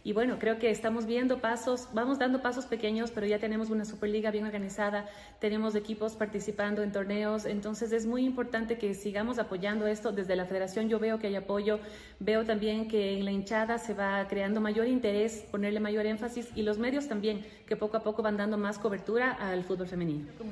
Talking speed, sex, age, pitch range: 200 wpm, female, 30-49, 195-225 Hz